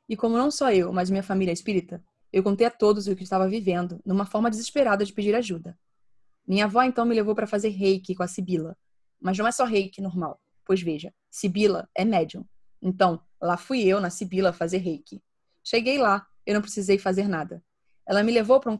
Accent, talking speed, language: Brazilian, 210 wpm, Portuguese